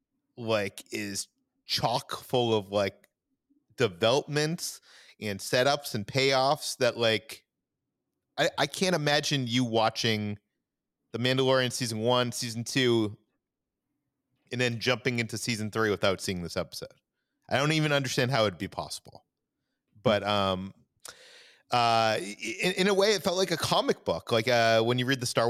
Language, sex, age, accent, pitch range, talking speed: English, male, 30-49, American, 105-130 Hz, 150 wpm